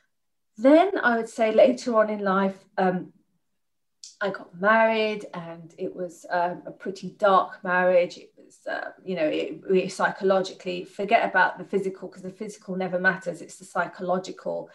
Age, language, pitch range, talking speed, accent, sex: 30-49, English, 180-205 Hz, 155 wpm, British, female